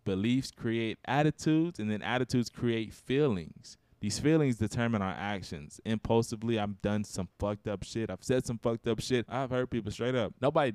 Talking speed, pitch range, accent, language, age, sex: 180 wpm, 105-130 Hz, American, English, 20-39, male